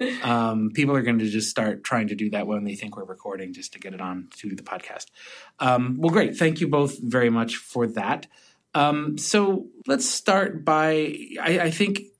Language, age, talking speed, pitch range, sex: English, 30-49, 205 wpm, 105-135 Hz, male